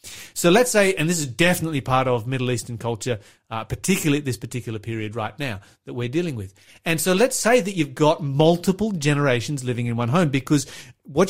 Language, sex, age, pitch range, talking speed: English, male, 30-49, 125-165 Hz, 205 wpm